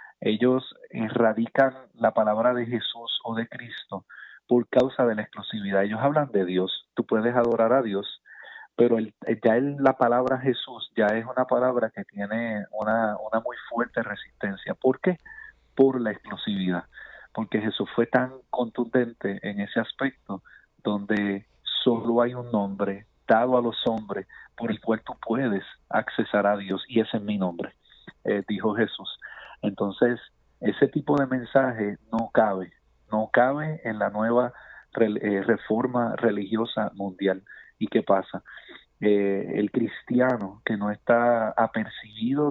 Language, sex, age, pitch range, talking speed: Spanish, male, 40-59, 105-125 Hz, 145 wpm